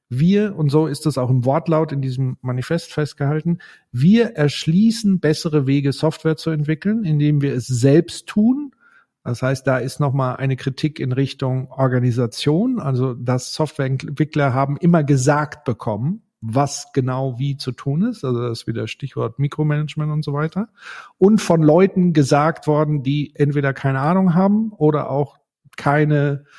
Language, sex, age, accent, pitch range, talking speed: German, male, 50-69, German, 135-175 Hz, 155 wpm